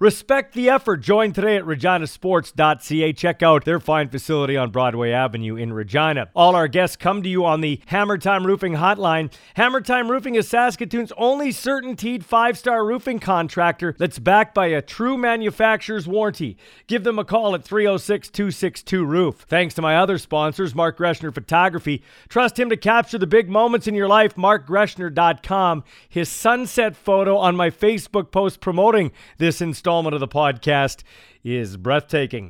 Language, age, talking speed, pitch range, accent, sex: English, 40-59, 160 wpm, 165-220 Hz, American, male